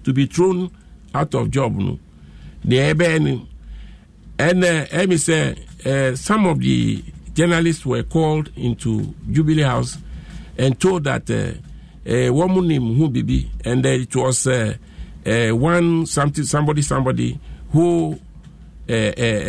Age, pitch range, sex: 50-69, 130-175 Hz, male